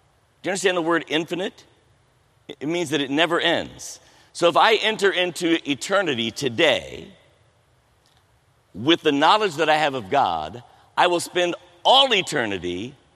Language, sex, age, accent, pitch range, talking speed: English, male, 50-69, American, 120-170 Hz, 140 wpm